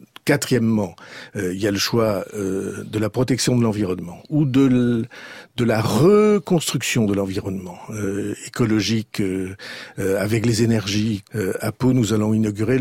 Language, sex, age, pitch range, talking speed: French, male, 50-69, 105-145 Hz, 155 wpm